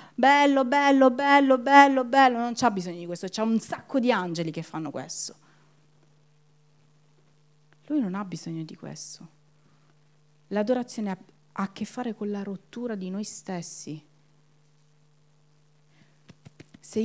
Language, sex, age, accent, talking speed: Italian, female, 40-59, native, 125 wpm